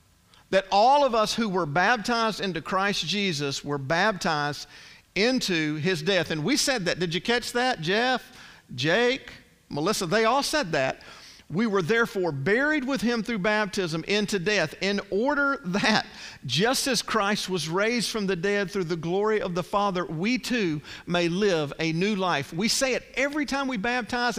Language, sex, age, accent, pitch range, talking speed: English, male, 50-69, American, 180-230 Hz, 175 wpm